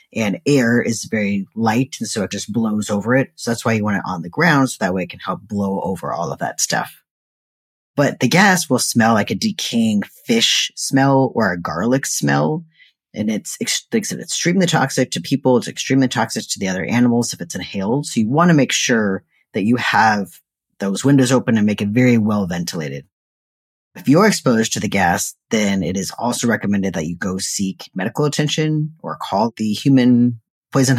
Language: English